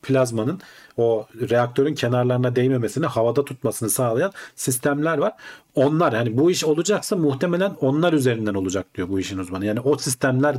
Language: Turkish